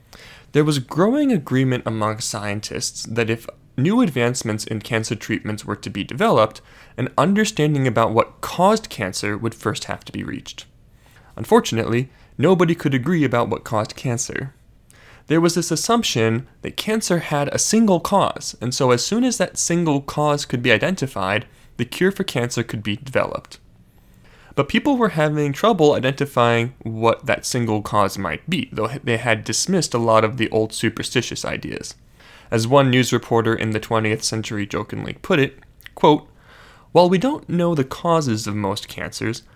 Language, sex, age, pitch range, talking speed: English, male, 20-39, 110-165 Hz, 165 wpm